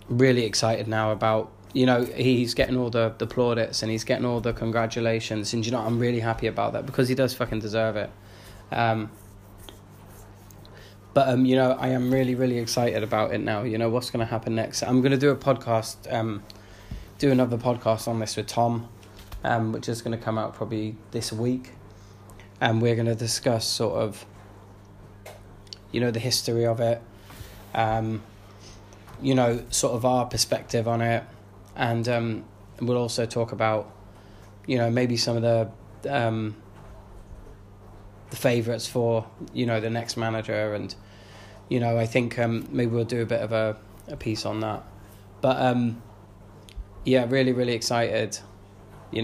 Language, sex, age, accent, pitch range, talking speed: English, male, 20-39, British, 105-120 Hz, 175 wpm